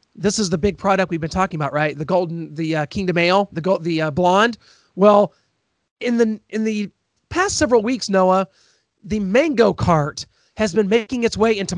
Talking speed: 190 wpm